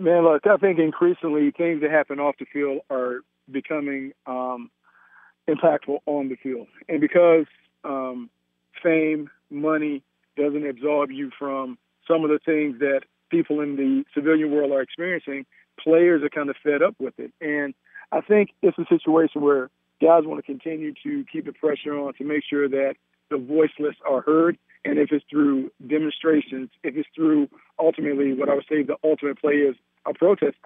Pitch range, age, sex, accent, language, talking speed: 140-160 Hz, 40-59, male, American, English, 175 wpm